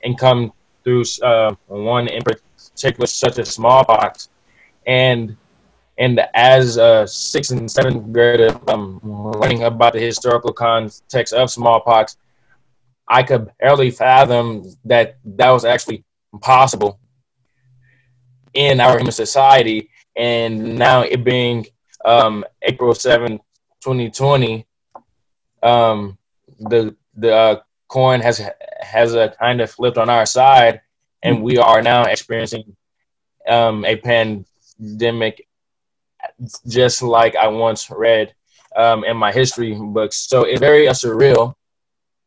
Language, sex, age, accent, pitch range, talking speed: English, male, 20-39, American, 115-130 Hz, 120 wpm